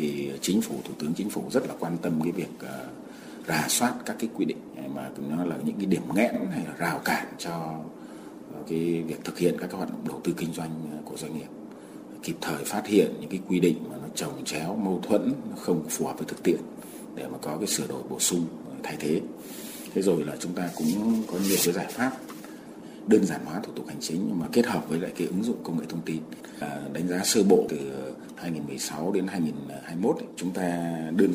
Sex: male